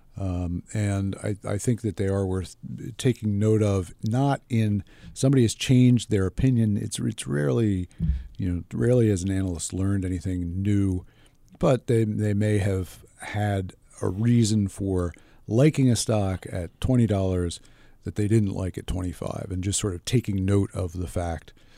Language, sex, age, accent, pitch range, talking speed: English, male, 50-69, American, 90-110 Hz, 165 wpm